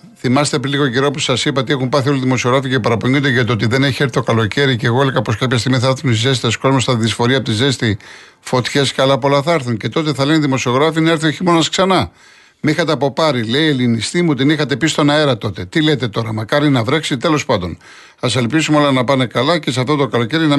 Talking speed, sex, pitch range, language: 245 wpm, male, 130-160 Hz, Greek